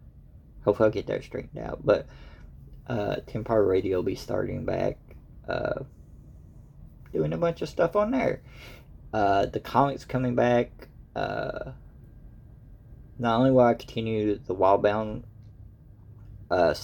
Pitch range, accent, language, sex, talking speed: 100-125 Hz, American, English, male, 130 wpm